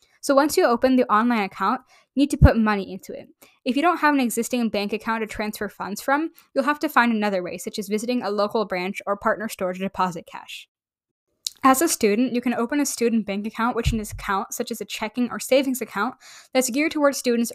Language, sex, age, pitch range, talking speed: English, female, 10-29, 205-255 Hz, 235 wpm